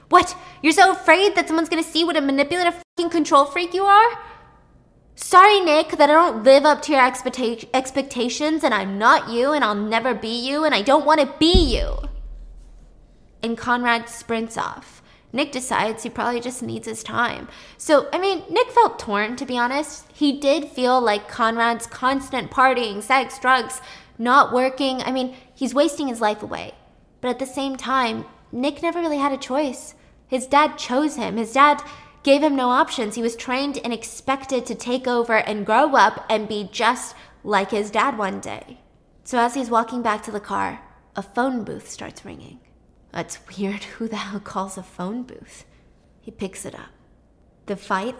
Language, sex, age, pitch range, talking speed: English, female, 20-39, 225-290 Hz, 185 wpm